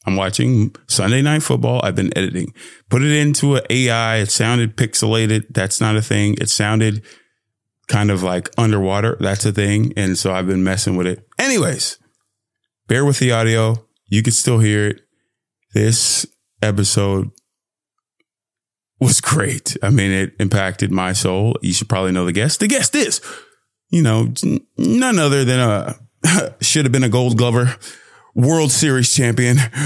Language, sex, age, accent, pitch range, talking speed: English, male, 20-39, American, 105-130 Hz, 160 wpm